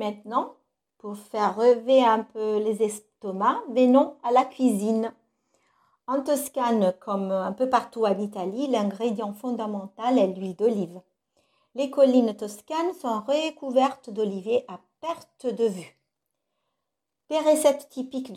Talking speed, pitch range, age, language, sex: 125 wpm, 210-265 Hz, 50-69, French, female